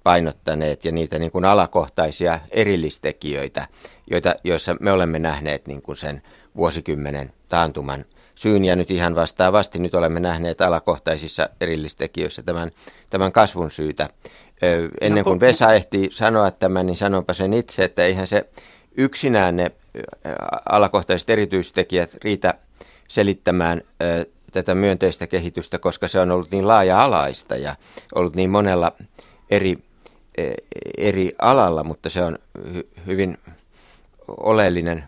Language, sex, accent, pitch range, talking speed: Finnish, male, native, 85-100 Hz, 115 wpm